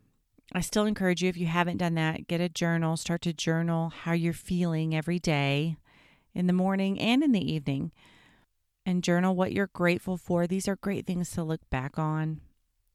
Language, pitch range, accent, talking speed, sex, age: English, 165-190 Hz, American, 190 wpm, female, 40-59